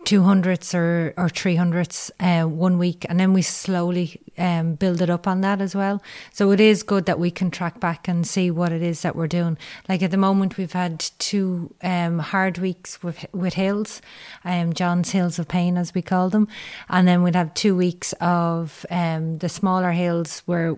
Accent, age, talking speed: Irish, 30-49, 210 wpm